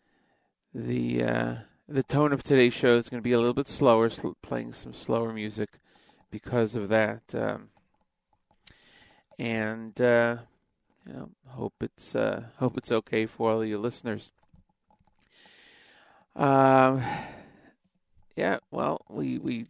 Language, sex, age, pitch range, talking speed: English, male, 40-59, 110-135 Hz, 130 wpm